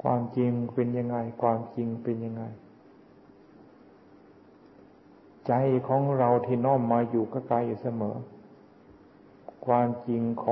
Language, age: Thai, 60-79